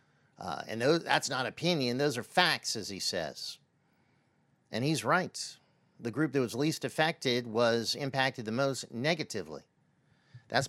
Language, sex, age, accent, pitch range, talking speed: English, male, 50-69, American, 105-140 Hz, 145 wpm